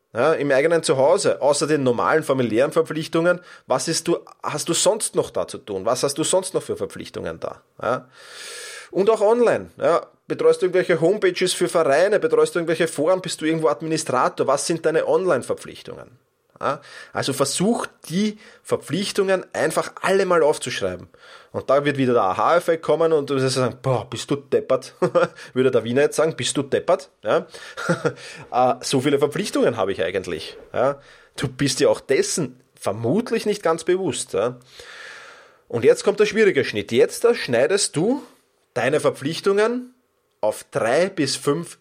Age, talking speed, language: 30-49, 160 wpm, German